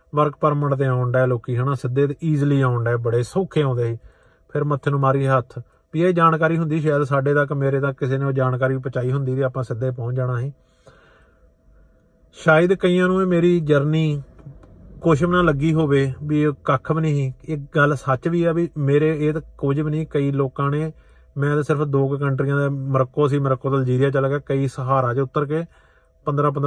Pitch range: 135-150 Hz